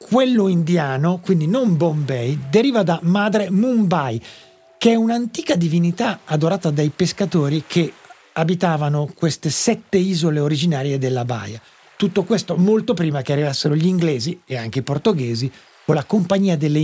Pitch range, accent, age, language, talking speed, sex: 135-185 Hz, native, 50-69, Italian, 145 wpm, male